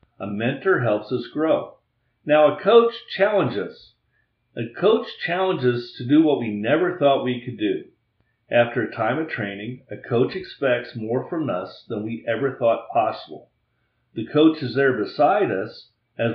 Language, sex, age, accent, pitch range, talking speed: English, male, 50-69, American, 110-145 Hz, 170 wpm